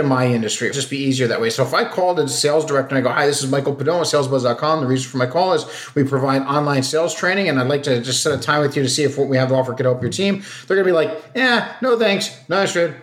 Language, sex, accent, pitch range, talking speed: English, male, American, 140-195 Hz, 315 wpm